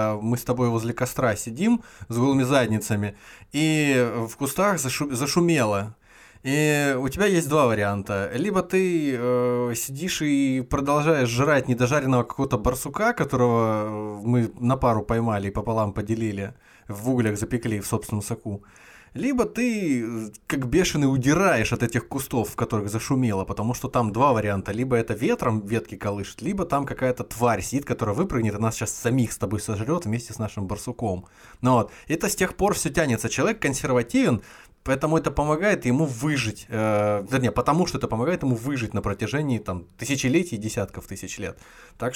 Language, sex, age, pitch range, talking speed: Russian, male, 20-39, 110-140 Hz, 160 wpm